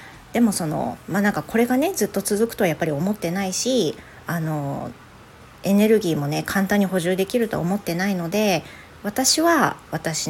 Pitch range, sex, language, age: 155-205 Hz, female, Japanese, 40-59